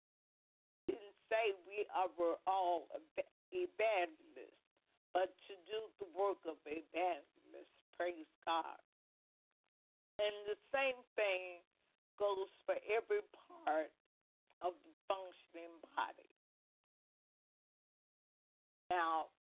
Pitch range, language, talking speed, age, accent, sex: 175-215 Hz, English, 85 wpm, 50-69, American, female